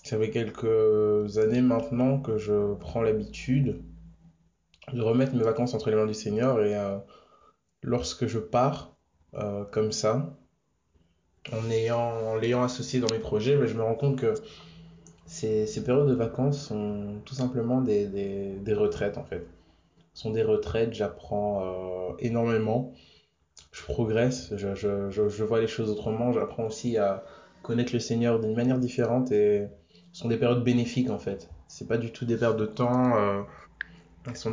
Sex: male